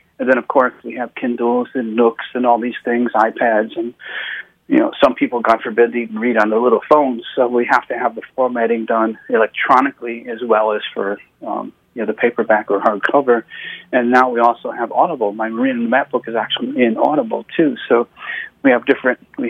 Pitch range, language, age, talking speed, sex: 115-130 Hz, English, 40-59, 205 wpm, male